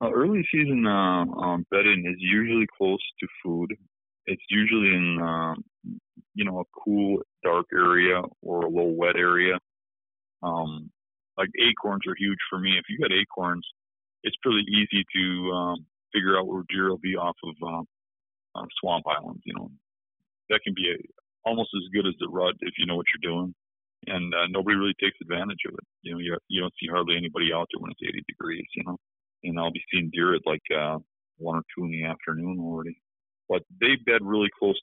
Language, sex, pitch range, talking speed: English, male, 85-100 Hz, 200 wpm